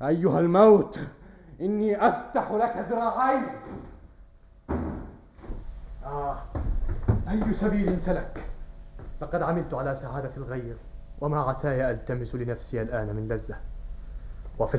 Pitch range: 105-150 Hz